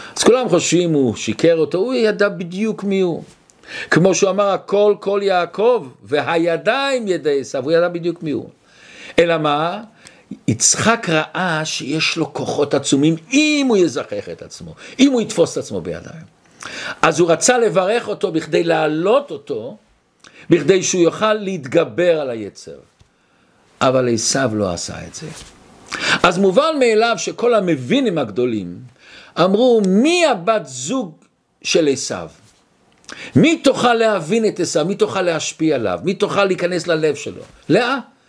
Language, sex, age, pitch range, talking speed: Hebrew, male, 50-69, 165-250 Hz, 140 wpm